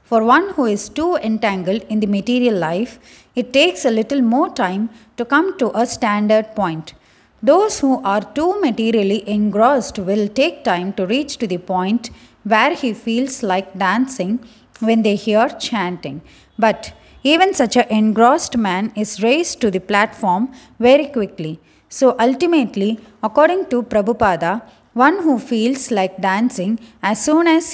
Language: English